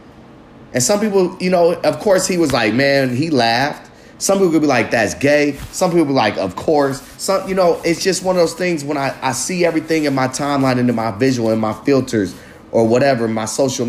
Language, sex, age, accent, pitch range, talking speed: English, male, 30-49, American, 130-165 Hz, 240 wpm